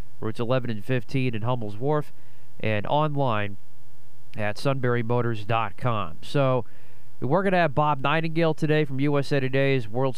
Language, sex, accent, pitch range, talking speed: English, male, American, 120-145 Hz, 135 wpm